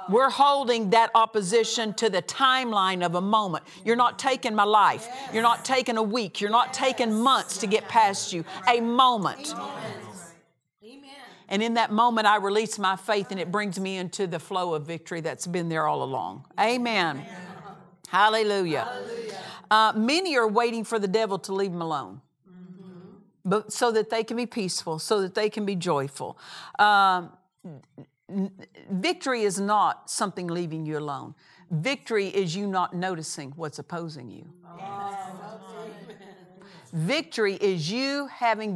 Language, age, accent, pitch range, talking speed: English, 50-69, American, 175-220 Hz, 155 wpm